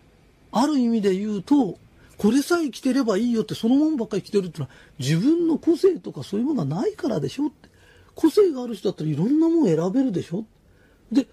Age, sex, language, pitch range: 40-59, male, Japanese, 135-225 Hz